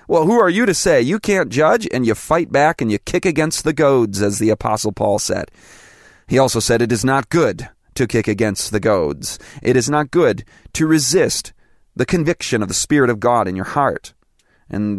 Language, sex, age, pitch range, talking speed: English, male, 30-49, 110-140 Hz, 210 wpm